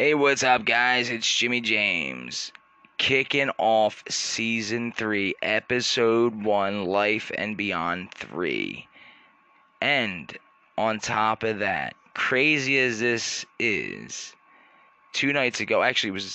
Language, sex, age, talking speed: English, male, 20-39, 115 wpm